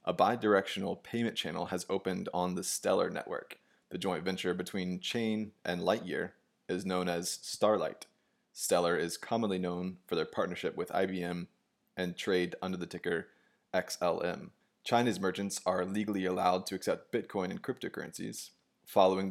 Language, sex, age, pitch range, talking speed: English, male, 20-39, 90-100 Hz, 145 wpm